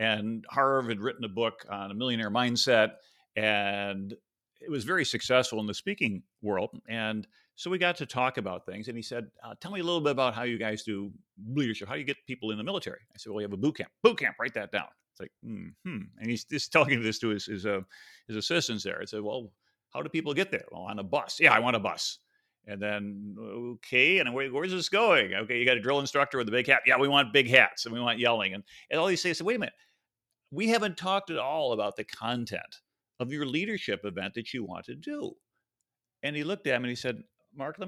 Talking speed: 255 wpm